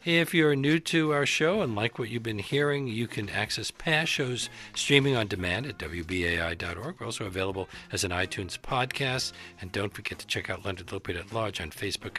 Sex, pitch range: male, 95-125 Hz